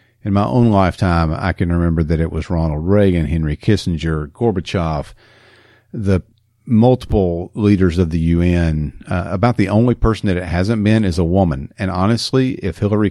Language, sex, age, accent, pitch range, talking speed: English, male, 50-69, American, 90-110 Hz, 170 wpm